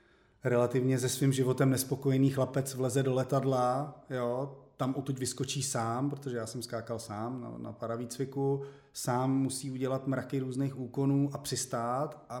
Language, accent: Czech, native